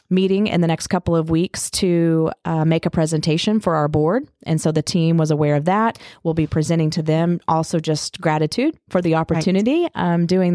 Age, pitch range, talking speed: 30-49, 160-185 Hz, 205 wpm